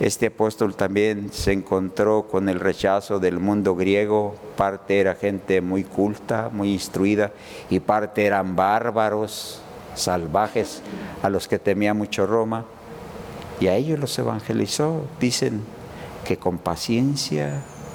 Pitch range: 95-115 Hz